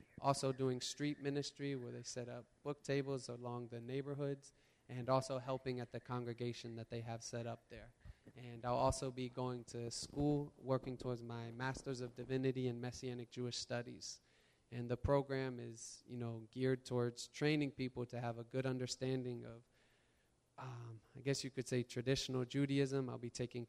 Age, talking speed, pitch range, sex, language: 20-39, 175 wpm, 120-135 Hz, male, English